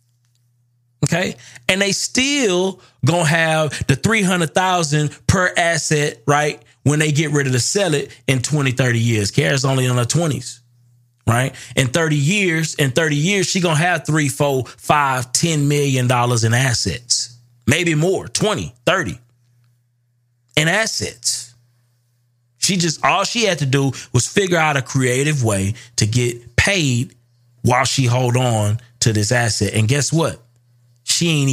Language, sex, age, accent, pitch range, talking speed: English, male, 30-49, American, 120-155 Hz, 150 wpm